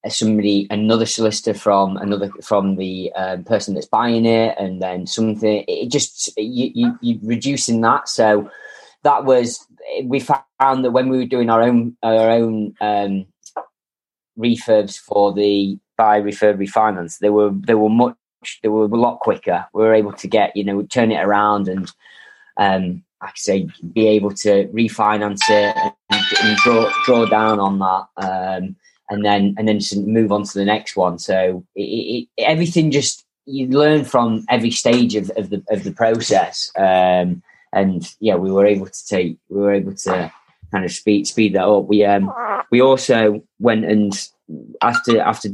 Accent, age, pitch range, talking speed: British, 20-39, 95-115 Hz, 175 wpm